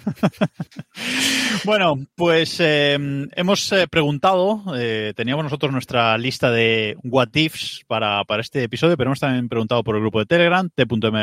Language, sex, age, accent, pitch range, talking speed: Spanish, male, 20-39, Spanish, 110-145 Hz, 150 wpm